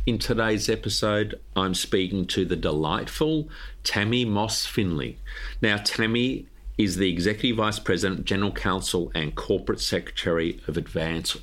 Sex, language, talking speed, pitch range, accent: male, English, 125 wpm, 90-120 Hz, Australian